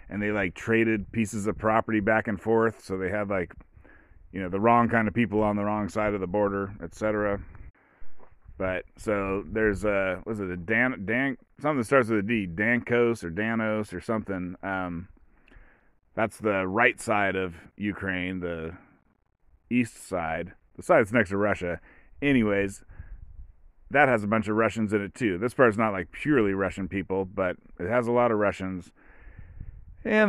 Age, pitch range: 30-49, 95-115 Hz